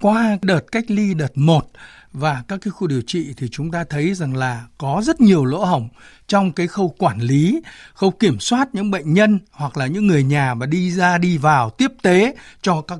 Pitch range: 145-210 Hz